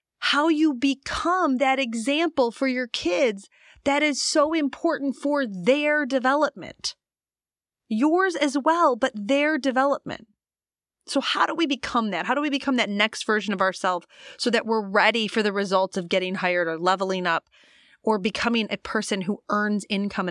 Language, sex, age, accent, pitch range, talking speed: English, female, 30-49, American, 210-290 Hz, 165 wpm